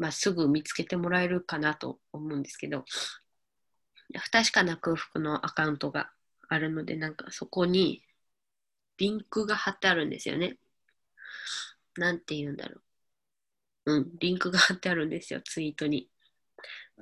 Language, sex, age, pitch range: Japanese, female, 20-39, 155-215 Hz